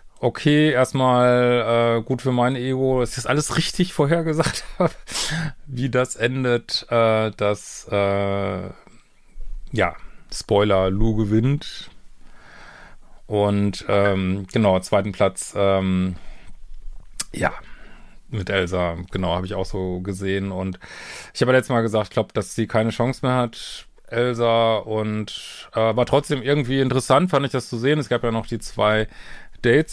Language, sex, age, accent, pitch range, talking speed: German, male, 30-49, German, 110-135 Hz, 140 wpm